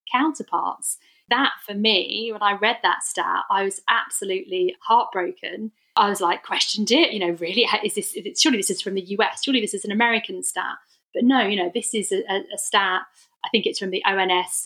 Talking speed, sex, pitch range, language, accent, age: 205 wpm, female, 190-240 Hz, English, British, 30-49